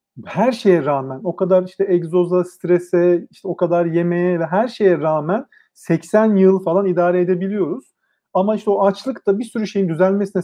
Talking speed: 170 wpm